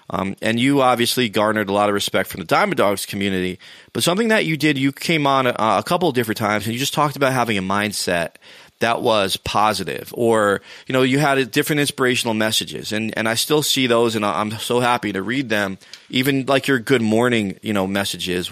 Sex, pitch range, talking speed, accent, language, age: male, 110-140 Hz, 225 wpm, American, English, 30-49